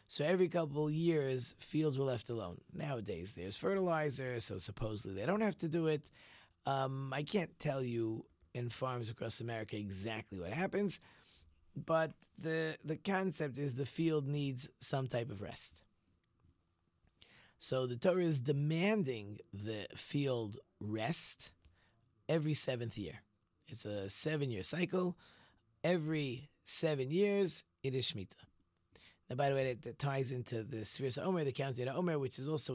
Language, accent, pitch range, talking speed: English, American, 110-155 Hz, 150 wpm